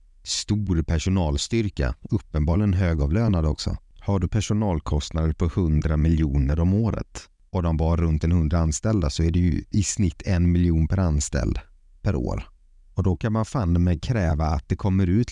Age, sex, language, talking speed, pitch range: 30-49, male, Swedish, 165 wpm, 75-95 Hz